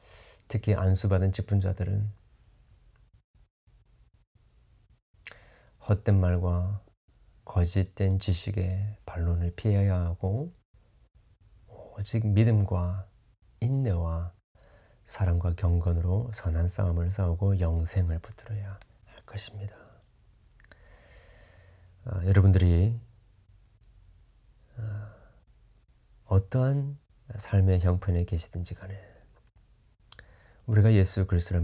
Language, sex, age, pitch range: Korean, male, 40-59, 90-105 Hz